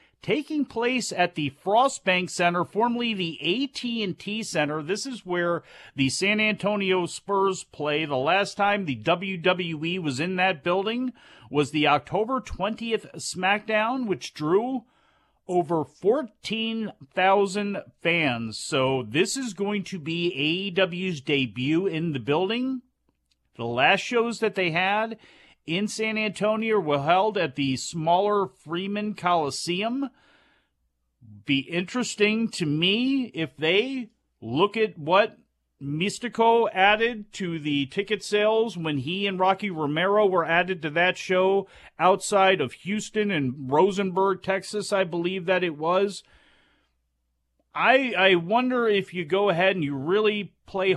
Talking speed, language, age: 130 wpm, English, 40-59